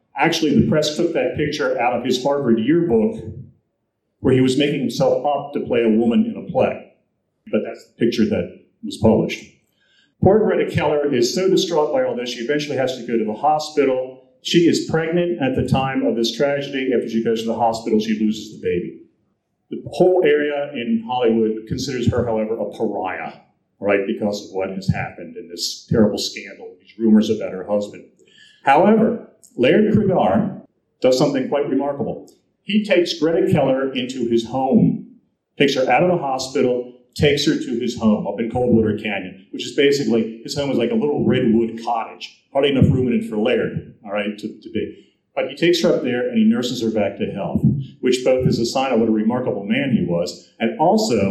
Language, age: English, 40-59